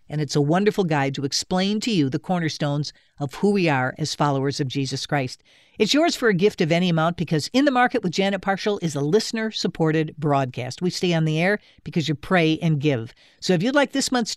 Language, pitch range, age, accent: English, 155-205 Hz, 50-69, American